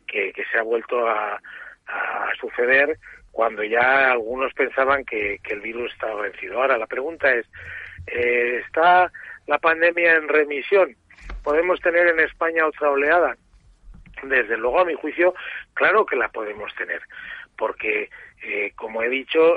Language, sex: Spanish, male